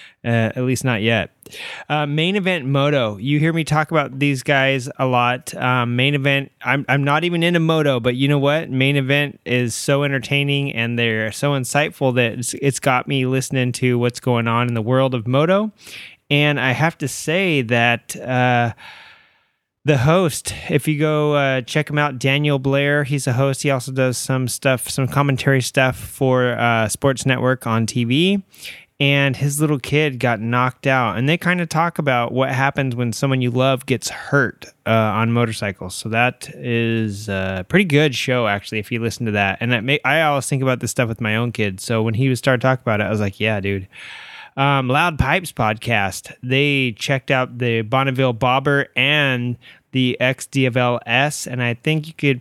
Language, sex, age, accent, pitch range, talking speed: English, male, 20-39, American, 120-145 Hz, 195 wpm